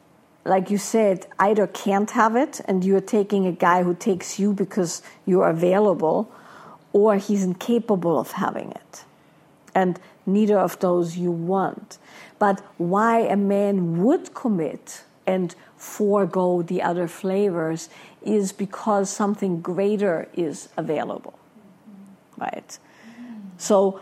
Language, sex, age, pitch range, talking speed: English, female, 50-69, 185-215 Hz, 120 wpm